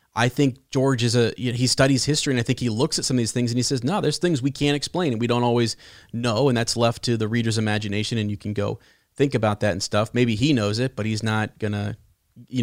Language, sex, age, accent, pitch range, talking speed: English, male, 30-49, American, 110-135 Hz, 280 wpm